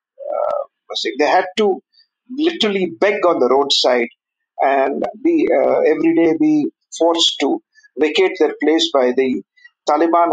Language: Hindi